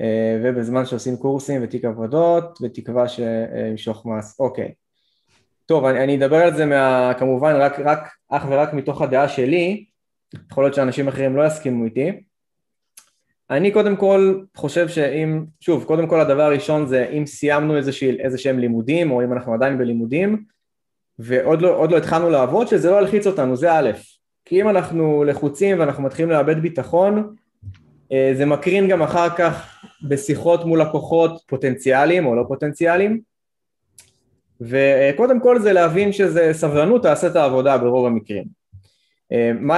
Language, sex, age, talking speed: Hebrew, male, 20-39, 145 wpm